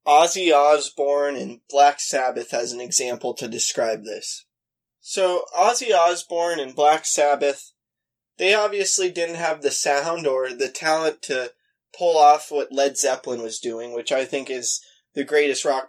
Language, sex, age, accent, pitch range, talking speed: English, male, 20-39, American, 130-160 Hz, 155 wpm